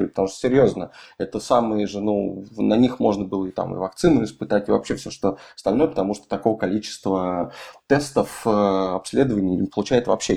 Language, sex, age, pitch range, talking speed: Russian, male, 20-39, 95-115 Hz, 175 wpm